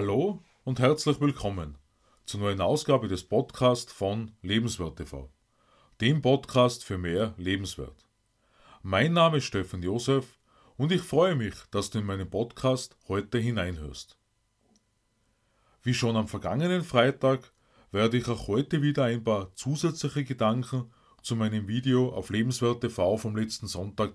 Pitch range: 110-135 Hz